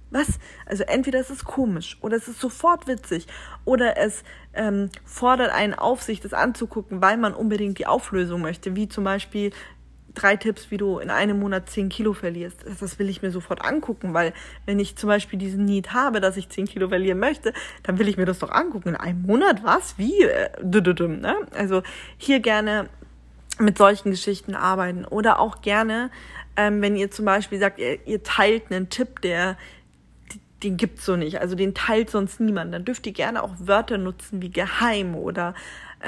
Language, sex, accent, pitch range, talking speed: German, female, German, 190-220 Hz, 185 wpm